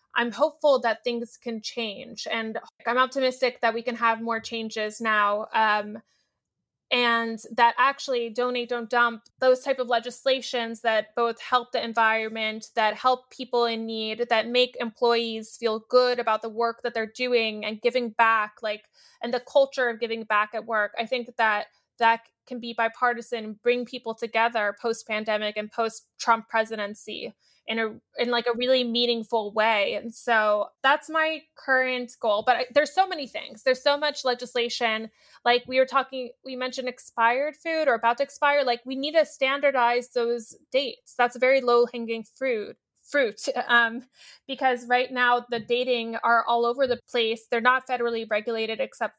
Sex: female